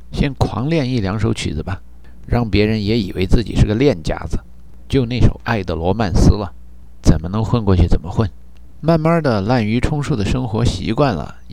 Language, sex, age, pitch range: Chinese, male, 50-69, 80-120 Hz